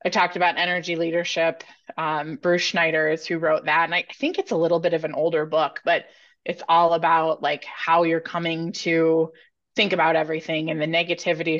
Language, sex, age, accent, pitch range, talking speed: English, female, 20-39, American, 160-180 Hz, 195 wpm